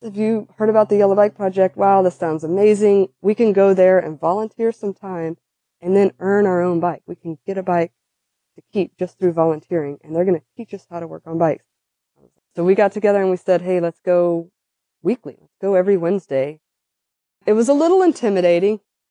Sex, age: female, 20-39